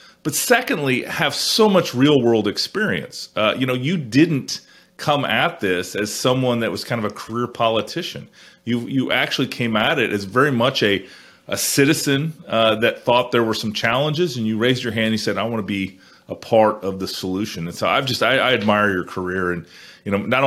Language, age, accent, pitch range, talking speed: English, 30-49, American, 95-120 Hz, 215 wpm